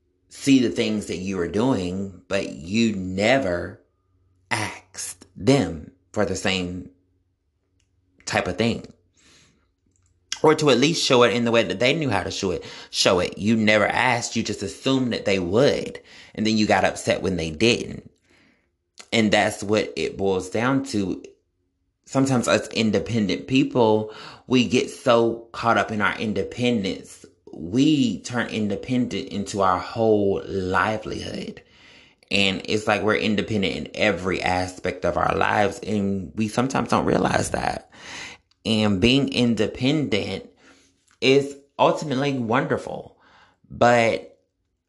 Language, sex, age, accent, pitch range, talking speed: English, male, 30-49, American, 90-115 Hz, 140 wpm